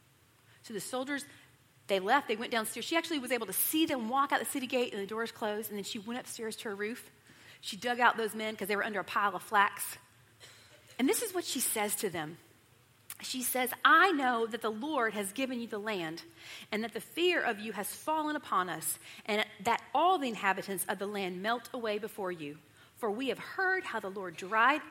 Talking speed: 230 wpm